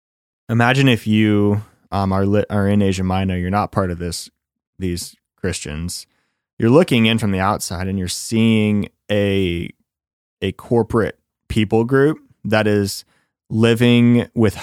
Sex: male